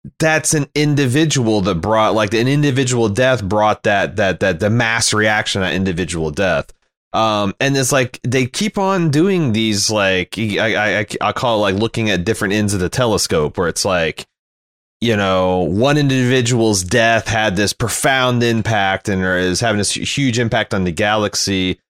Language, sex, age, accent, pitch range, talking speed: English, male, 30-49, American, 95-120 Hz, 175 wpm